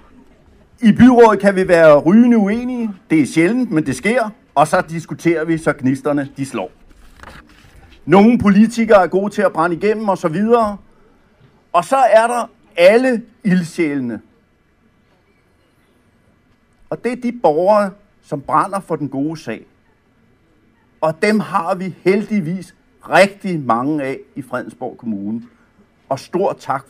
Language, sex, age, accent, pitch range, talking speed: Danish, male, 60-79, native, 155-210 Hz, 140 wpm